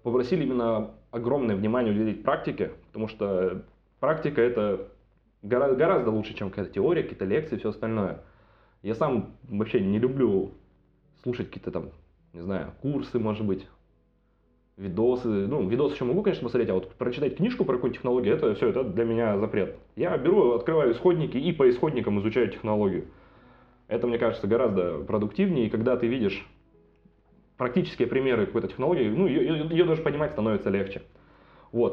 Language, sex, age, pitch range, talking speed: Russian, male, 20-39, 100-130 Hz, 155 wpm